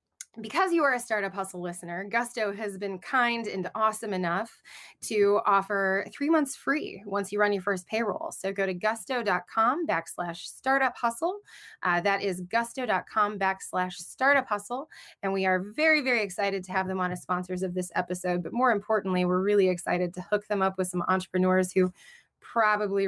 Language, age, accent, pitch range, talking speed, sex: English, 20-39, American, 190-270 Hz, 180 wpm, female